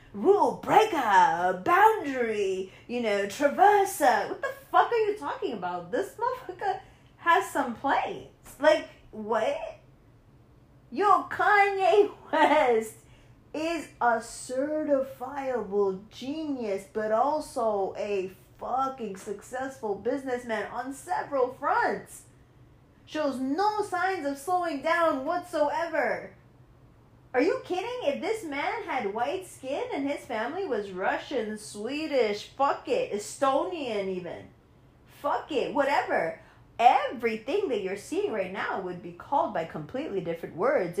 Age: 30-49